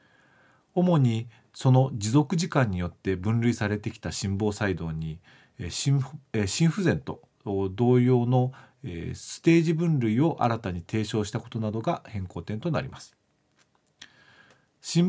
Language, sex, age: Japanese, male, 40-59